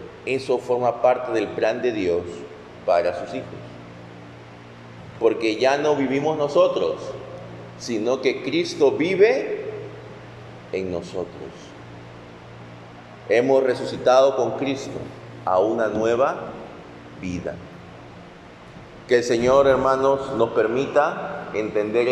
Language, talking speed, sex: Spanish, 100 wpm, male